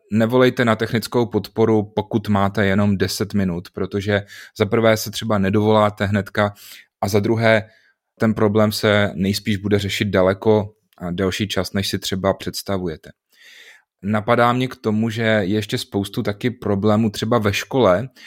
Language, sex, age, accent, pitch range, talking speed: Czech, male, 30-49, native, 100-115 Hz, 150 wpm